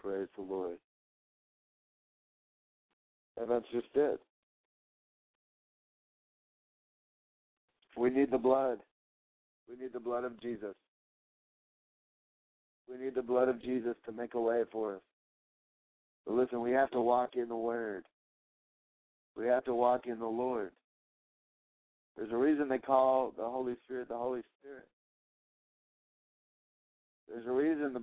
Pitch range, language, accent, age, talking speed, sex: 120-140 Hz, English, American, 60-79, 130 wpm, male